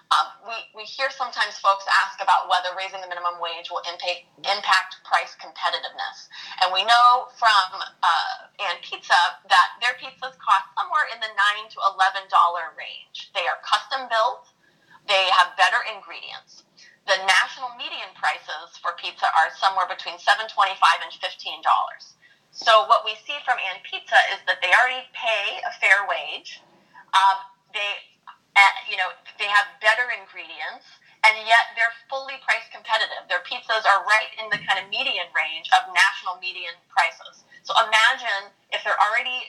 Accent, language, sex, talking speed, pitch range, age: American, English, female, 160 wpm, 185-235 Hz, 20-39